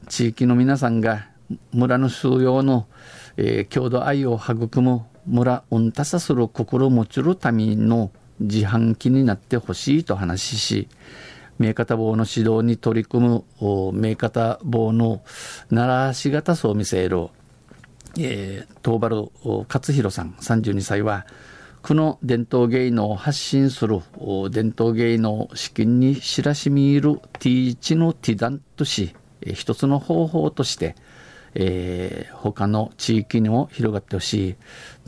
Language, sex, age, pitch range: Japanese, male, 50-69, 105-130 Hz